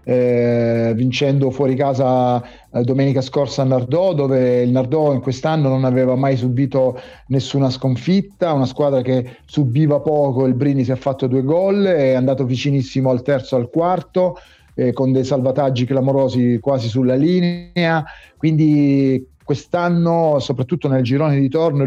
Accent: native